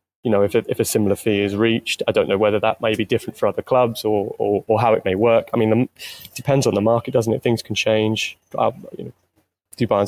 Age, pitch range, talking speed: 20-39, 100-115 Hz, 270 wpm